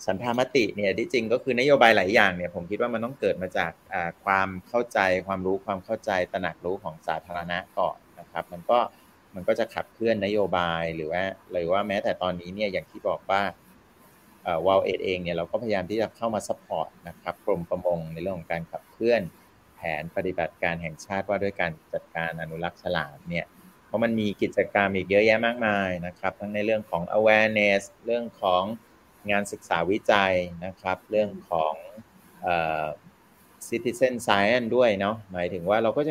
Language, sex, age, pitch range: Thai, male, 30-49, 90-110 Hz